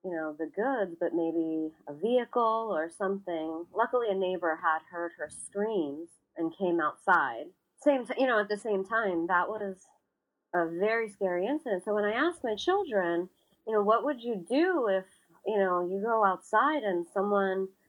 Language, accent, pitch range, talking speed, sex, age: English, American, 175-220 Hz, 180 wpm, female, 30-49